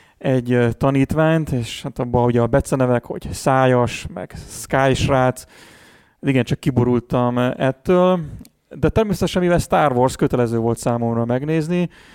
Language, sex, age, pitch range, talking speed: Hungarian, male, 30-49, 120-140 Hz, 130 wpm